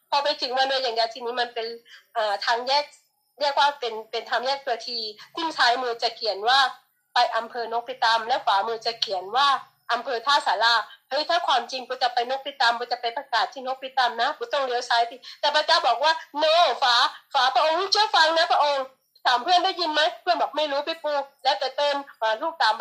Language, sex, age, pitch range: Thai, female, 20-39, 245-320 Hz